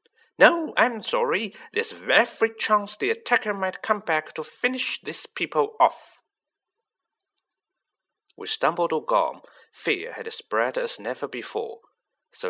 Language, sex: Chinese, male